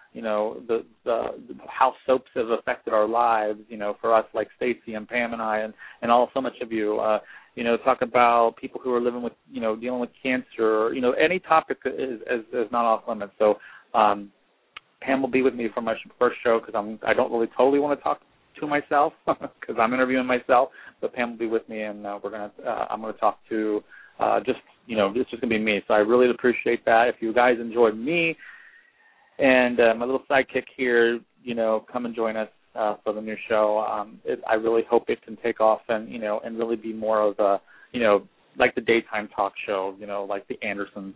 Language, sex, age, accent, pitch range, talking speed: English, male, 40-59, American, 105-120 Hz, 235 wpm